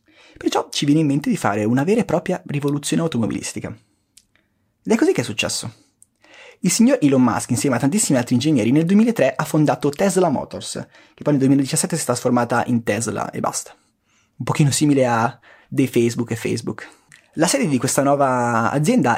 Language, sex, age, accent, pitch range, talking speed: Italian, male, 20-39, native, 115-160 Hz, 185 wpm